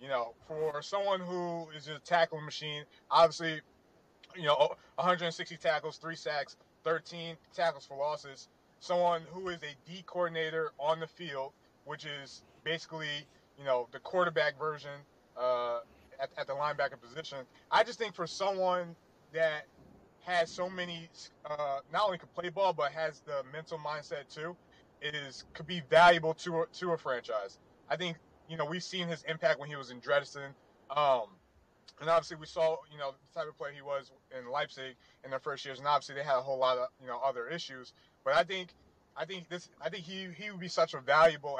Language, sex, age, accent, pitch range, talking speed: English, male, 20-39, American, 140-175 Hz, 190 wpm